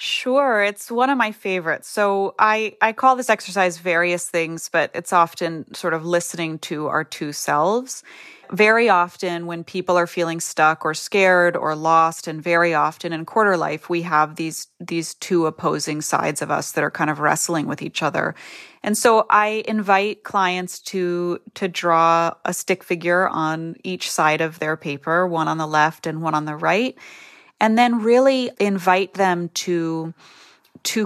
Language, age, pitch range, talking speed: English, 30-49, 165-200 Hz, 175 wpm